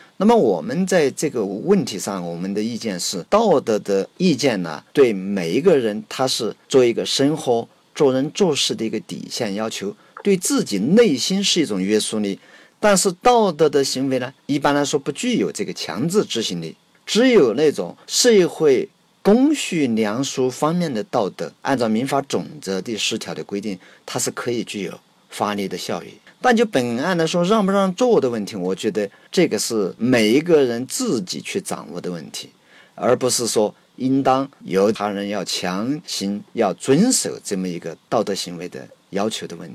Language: Chinese